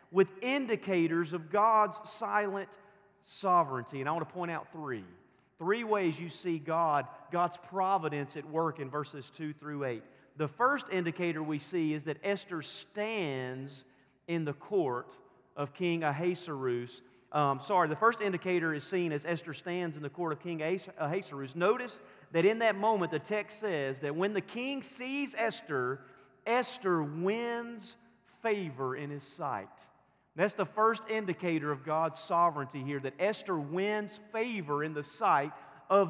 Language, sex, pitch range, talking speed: English, male, 155-215 Hz, 155 wpm